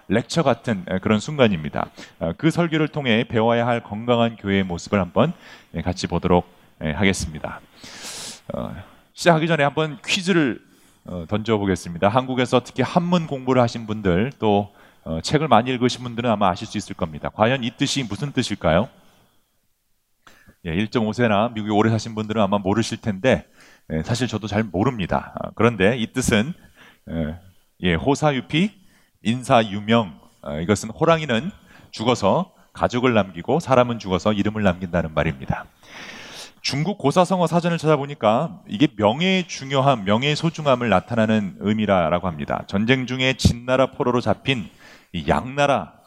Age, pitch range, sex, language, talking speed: 30-49, 100-135 Hz, male, English, 115 wpm